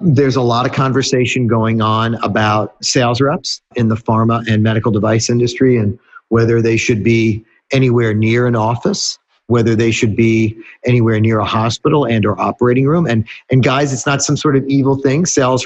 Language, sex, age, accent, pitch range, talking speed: English, male, 50-69, American, 115-140 Hz, 190 wpm